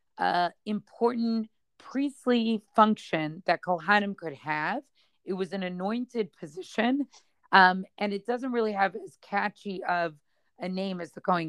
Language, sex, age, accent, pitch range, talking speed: English, female, 40-59, American, 175-215 Hz, 140 wpm